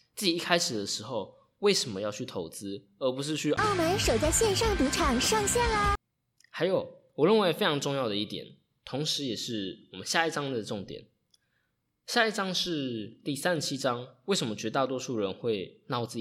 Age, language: 20-39, Chinese